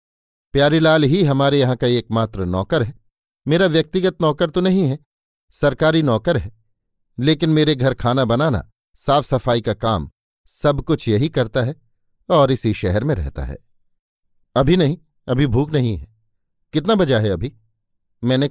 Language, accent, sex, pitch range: Hindi, native, male, 110-145 Hz